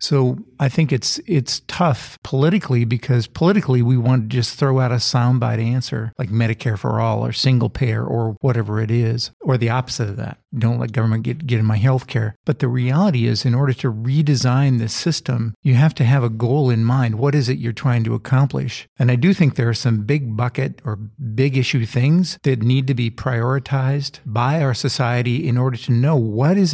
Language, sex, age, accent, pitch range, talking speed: English, male, 50-69, American, 120-145 Hz, 215 wpm